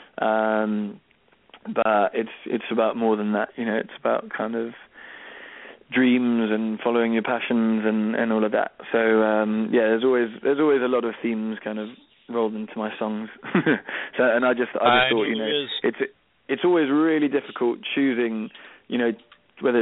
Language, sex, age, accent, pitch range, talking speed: English, male, 20-39, British, 110-120 Hz, 180 wpm